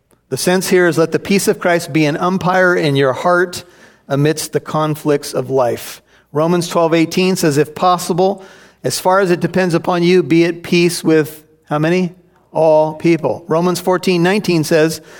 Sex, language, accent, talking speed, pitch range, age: male, English, American, 180 wpm, 150-185 Hz, 40-59